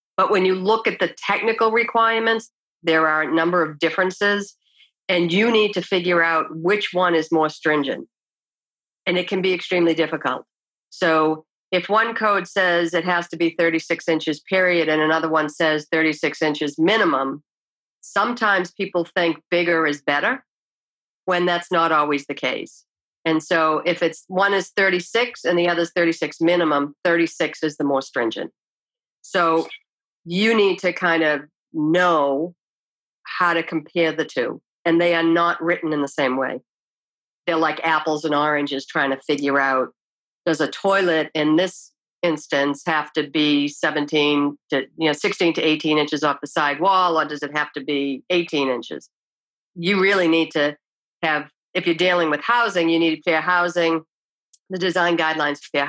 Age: 50-69